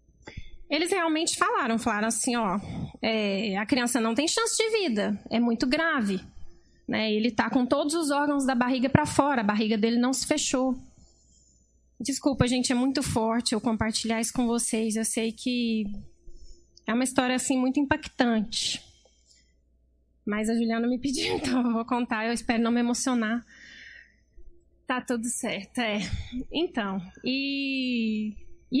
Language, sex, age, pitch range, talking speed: Portuguese, female, 20-39, 230-300 Hz, 150 wpm